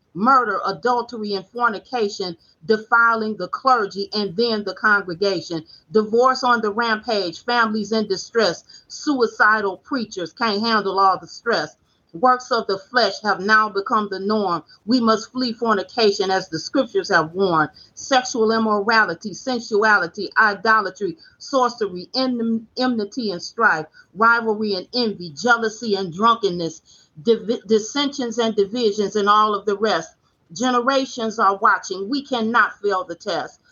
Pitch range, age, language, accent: 195-240 Hz, 40-59, English, American